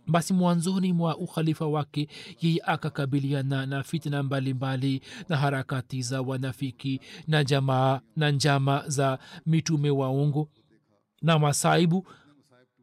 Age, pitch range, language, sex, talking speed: 40-59, 145-170 Hz, Swahili, male, 130 wpm